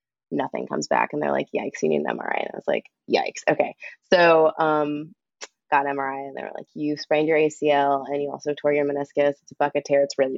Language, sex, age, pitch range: English, female, 20-39, 145-175 Hz